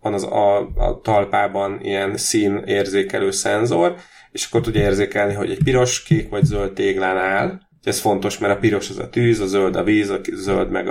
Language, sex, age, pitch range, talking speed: Hungarian, male, 30-49, 100-125 Hz, 200 wpm